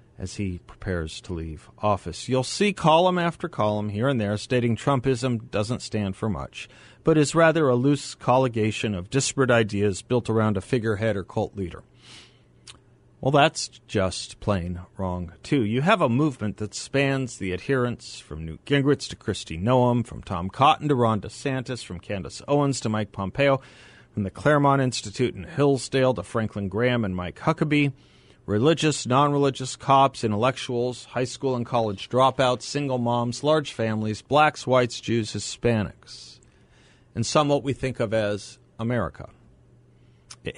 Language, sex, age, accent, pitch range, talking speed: English, male, 40-59, American, 105-140 Hz, 155 wpm